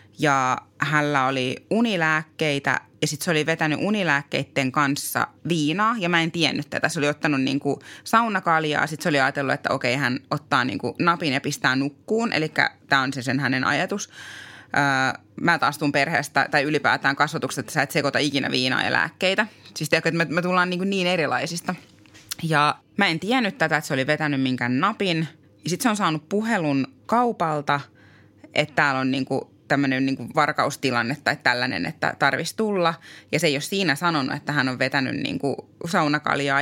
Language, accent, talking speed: Finnish, native, 175 wpm